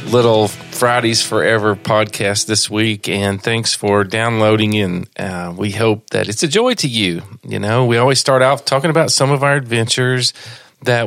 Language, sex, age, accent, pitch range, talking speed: English, male, 40-59, American, 105-130 Hz, 175 wpm